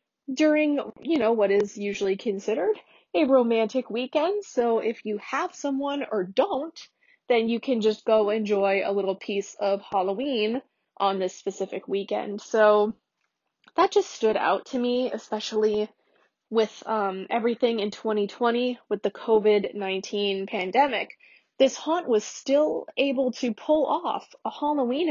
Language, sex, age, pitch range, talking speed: English, female, 20-39, 205-255 Hz, 140 wpm